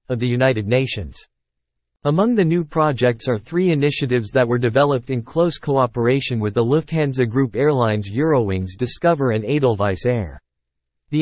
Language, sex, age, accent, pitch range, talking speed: English, male, 50-69, American, 115-150 Hz, 150 wpm